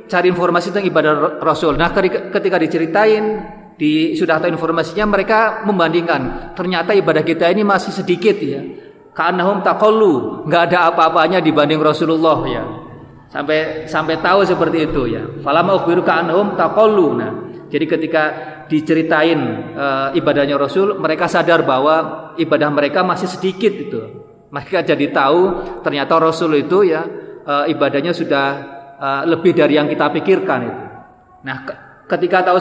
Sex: male